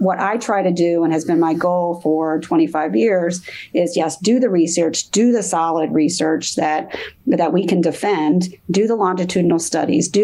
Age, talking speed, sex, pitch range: 40-59, 190 wpm, female, 165-195 Hz